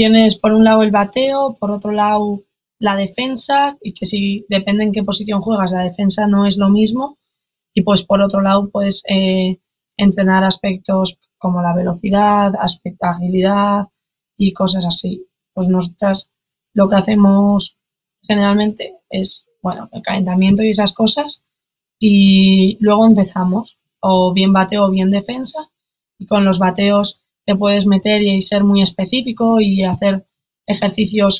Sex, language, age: female, Spanish, 20-39